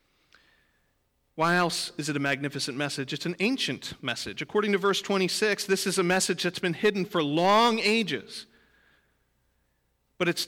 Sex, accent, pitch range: male, American, 140-205 Hz